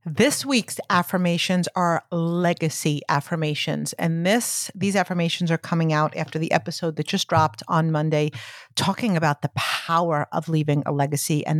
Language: English